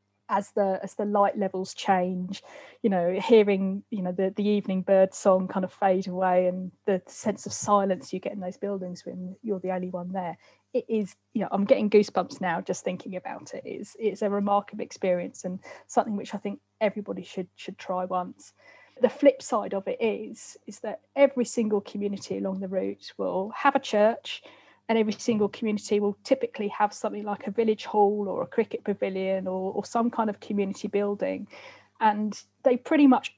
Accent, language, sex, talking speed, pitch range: British, English, female, 195 wpm, 190-225 Hz